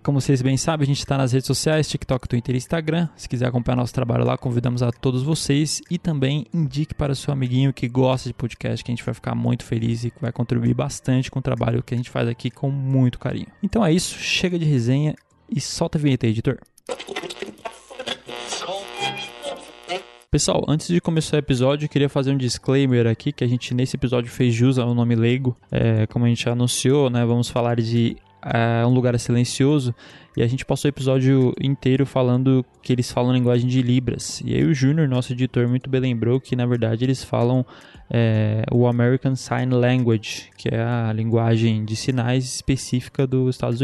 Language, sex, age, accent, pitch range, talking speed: Portuguese, male, 20-39, Brazilian, 120-135 Hz, 195 wpm